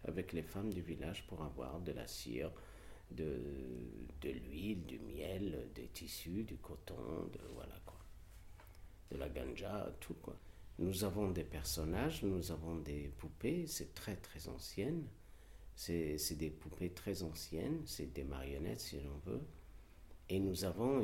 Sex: male